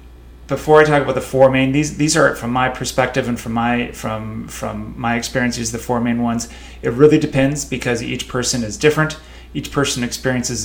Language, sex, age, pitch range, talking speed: English, male, 30-49, 115-135 Hz, 195 wpm